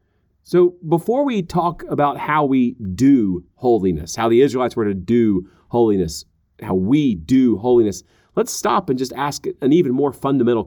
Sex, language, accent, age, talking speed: male, English, American, 40-59, 165 wpm